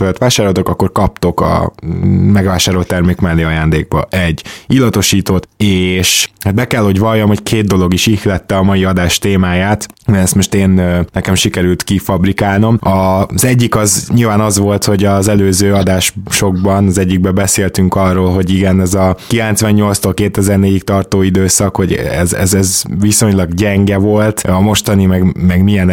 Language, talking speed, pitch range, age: Hungarian, 155 wpm, 95-105 Hz, 20-39